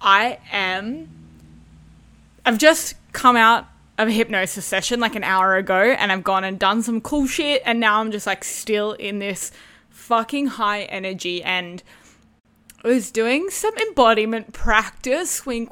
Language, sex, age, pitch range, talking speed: English, female, 10-29, 200-260 Hz, 155 wpm